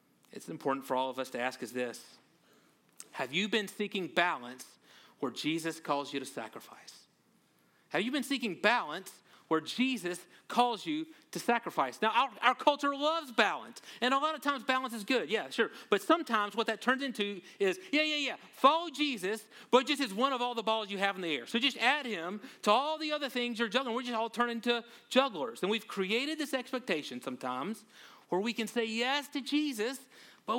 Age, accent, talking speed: 40-59, American, 205 wpm